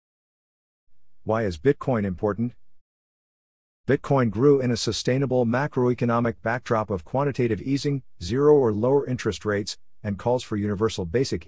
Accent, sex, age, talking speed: American, male, 50-69, 125 wpm